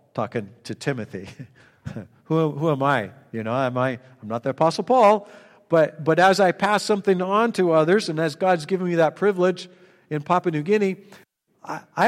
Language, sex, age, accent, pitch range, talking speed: English, male, 50-69, American, 165-225 Hz, 190 wpm